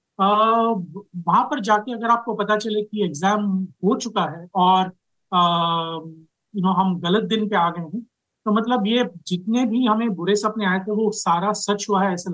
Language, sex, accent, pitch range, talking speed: Hindi, male, native, 180-225 Hz, 205 wpm